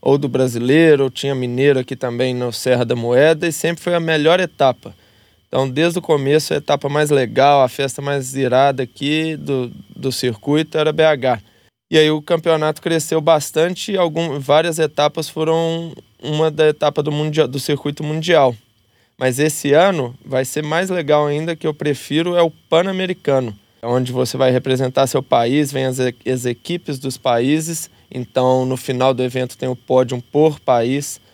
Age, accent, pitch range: 20-39, Brazilian, 125-155 Hz